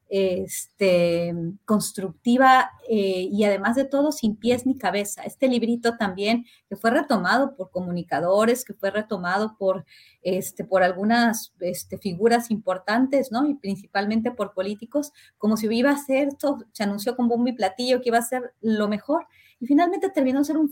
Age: 30-49